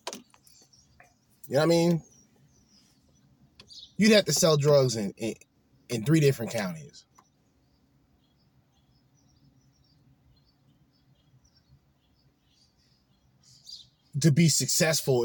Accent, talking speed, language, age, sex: American, 75 wpm, English, 20-39, male